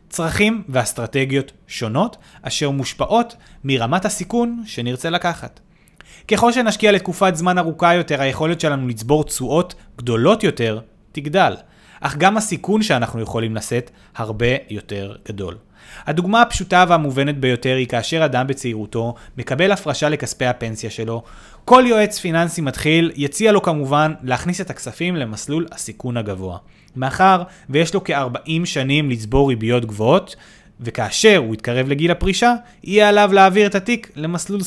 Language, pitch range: Hebrew, 125-185 Hz